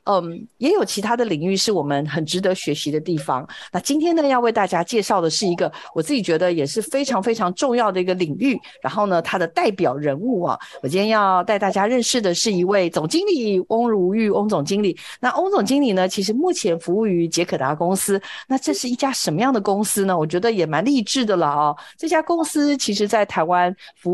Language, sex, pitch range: Chinese, female, 175-235 Hz